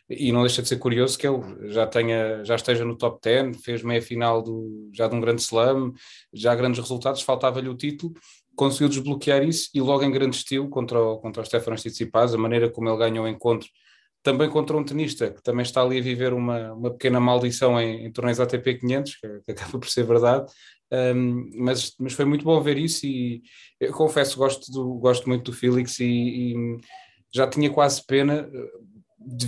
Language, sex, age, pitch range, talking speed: Portuguese, male, 20-39, 120-135 Hz, 200 wpm